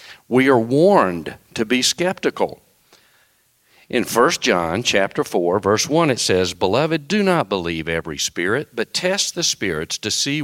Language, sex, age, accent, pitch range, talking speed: English, male, 50-69, American, 100-155 Hz, 155 wpm